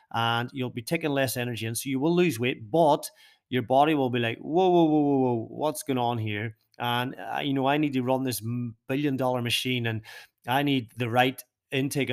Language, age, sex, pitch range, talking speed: English, 30-49, male, 120-150 Hz, 225 wpm